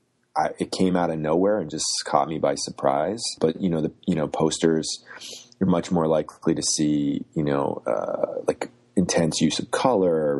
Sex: male